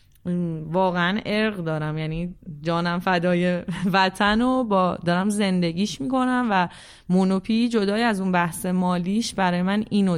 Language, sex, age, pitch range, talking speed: Persian, female, 20-39, 170-210 Hz, 125 wpm